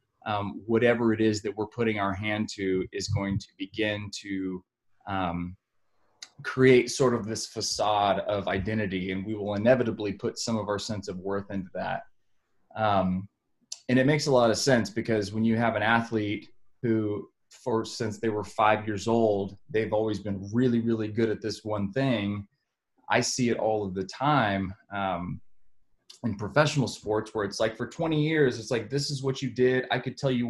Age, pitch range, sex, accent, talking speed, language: 20-39, 105-125 Hz, male, American, 185 wpm, English